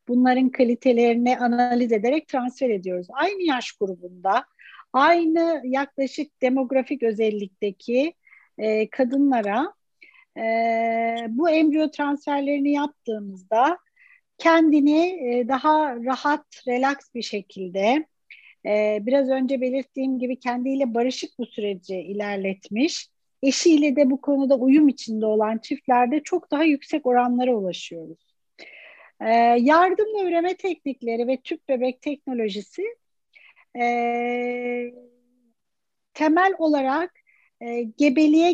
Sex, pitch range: female, 235-300 Hz